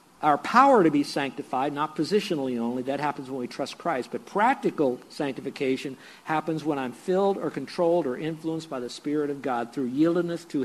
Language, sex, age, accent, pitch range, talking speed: English, male, 50-69, American, 135-175 Hz, 185 wpm